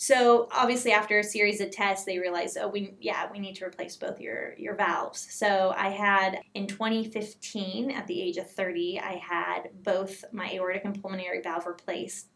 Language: English